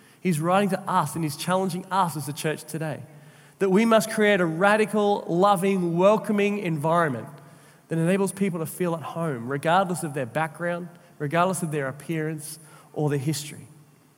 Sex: male